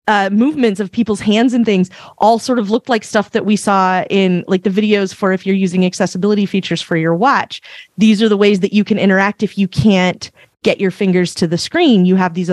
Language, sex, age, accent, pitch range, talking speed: English, female, 30-49, American, 170-210 Hz, 235 wpm